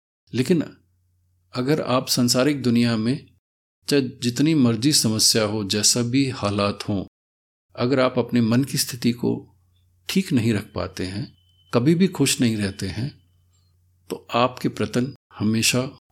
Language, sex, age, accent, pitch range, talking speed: English, male, 50-69, Indian, 90-140 Hz, 135 wpm